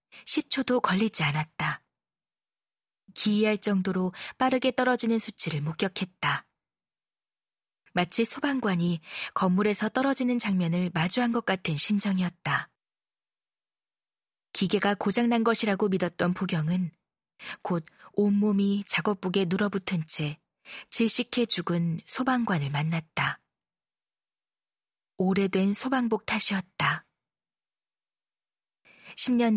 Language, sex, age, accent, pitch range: Korean, female, 20-39, native, 175-230 Hz